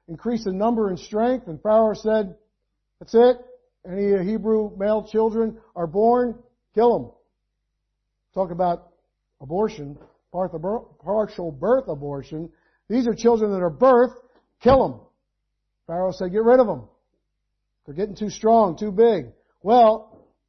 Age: 50-69